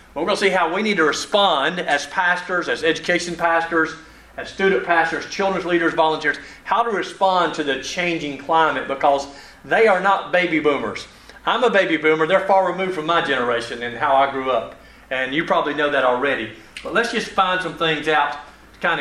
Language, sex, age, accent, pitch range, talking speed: English, male, 40-59, American, 155-200 Hz, 200 wpm